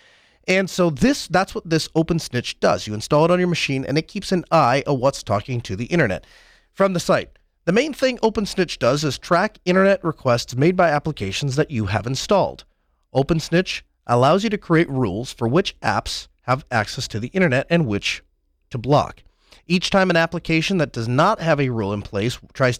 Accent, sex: American, male